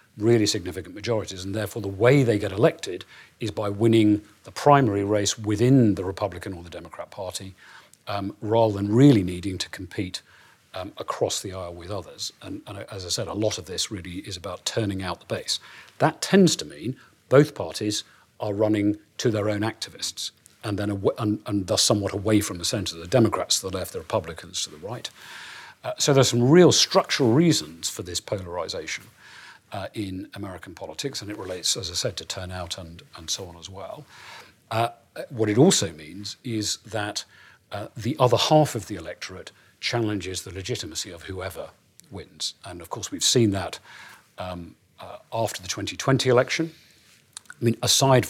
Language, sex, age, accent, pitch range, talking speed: English, male, 40-59, British, 95-115 Hz, 185 wpm